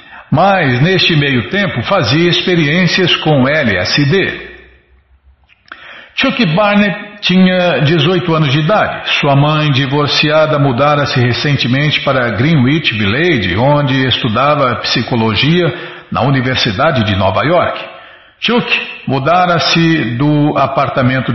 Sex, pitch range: male, 125-170 Hz